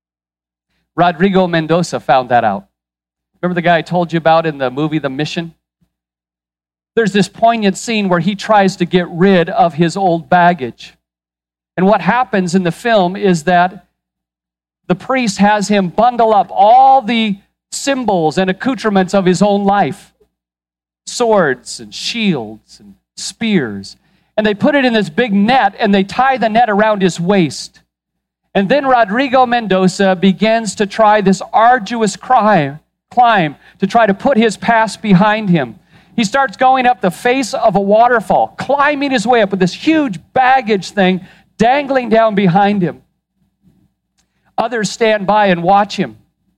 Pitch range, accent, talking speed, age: 165-220 Hz, American, 155 wpm, 40-59